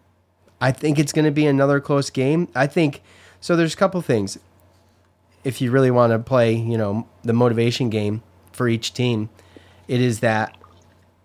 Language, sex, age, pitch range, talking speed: English, male, 30-49, 95-135 Hz, 175 wpm